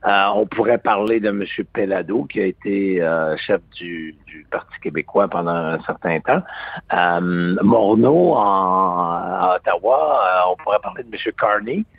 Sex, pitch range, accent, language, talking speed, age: male, 90-115 Hz, French, French, 155 wpm, 60-79